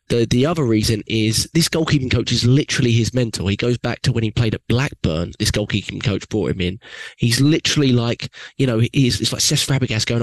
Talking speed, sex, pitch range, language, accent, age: 225 wpm, male, 105-125 Hz, English, British, 20-39